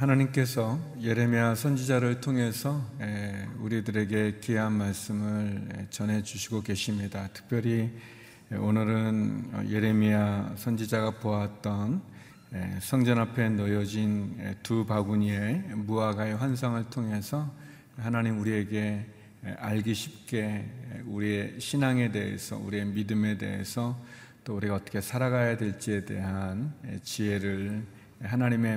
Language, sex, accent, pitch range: Korean, male, native, 105-120 Hz